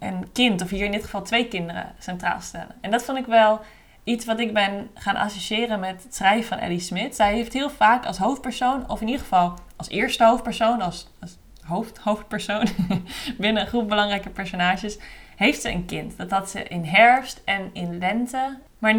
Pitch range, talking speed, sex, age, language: 185-225 Hz, 200 wpm, female, 20-39, Dutch